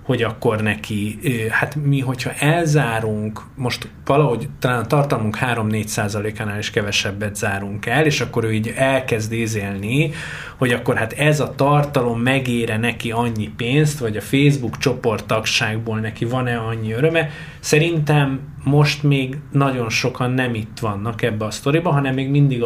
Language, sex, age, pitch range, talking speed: Hungarian, male, 20-39, 110-140 Hz, 150 wpm